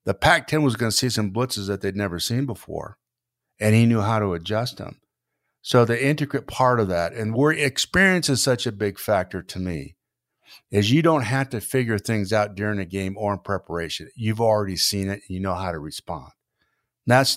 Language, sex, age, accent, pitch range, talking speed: English, male, 50-69, American, 100-125 Hz, 215 wpm